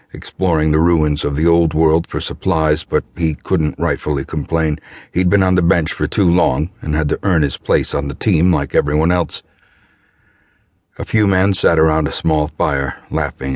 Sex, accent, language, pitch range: male, American, English, 75-90 Hz